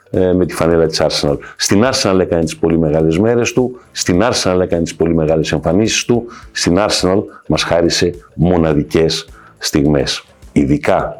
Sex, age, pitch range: male, 50-69, 80-115 Hz